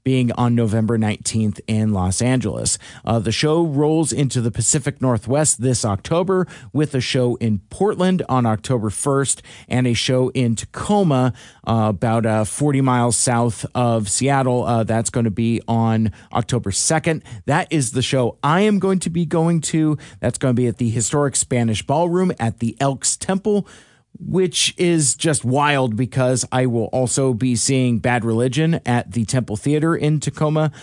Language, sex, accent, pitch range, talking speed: English, male, American, 115-145 Hz, 170 wpm